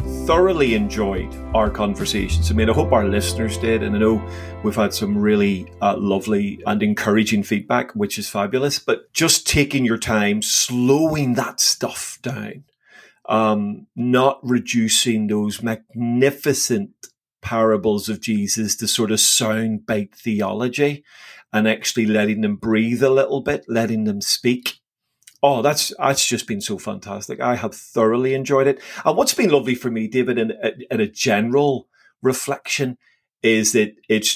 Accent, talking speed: British, 150 wpm